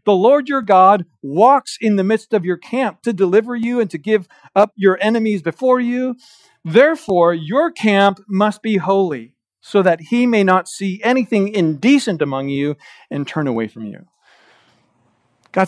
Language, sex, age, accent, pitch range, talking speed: English, male, 40-59, American, 160-220 Hz, 170 wpm